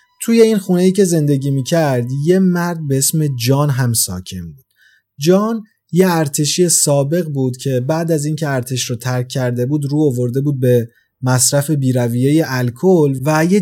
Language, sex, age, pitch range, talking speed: Persian, male, 30-49, 130-175 Hz, 170 wpm